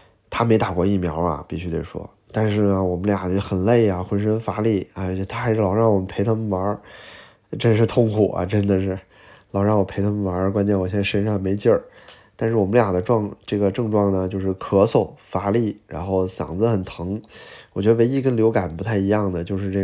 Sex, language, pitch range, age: male, Chinese, 95-110 Hz, 20-39